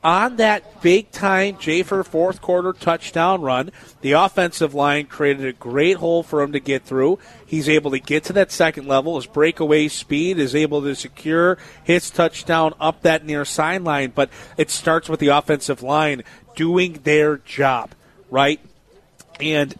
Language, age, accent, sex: English, 40-59, American, male